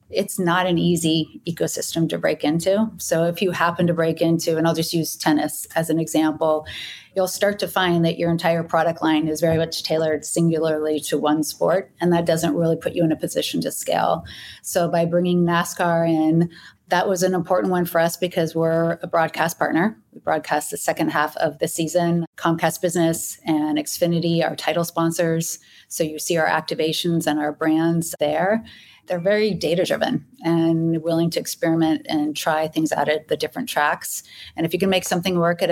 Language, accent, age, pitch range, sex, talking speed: English, American, 30-49, 155-175 Hz, female, 195 wpm